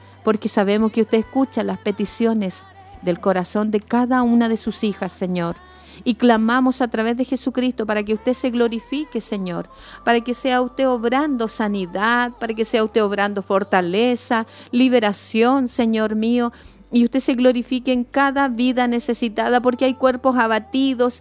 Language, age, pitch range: Spanish, 40-59, 220-255 Hz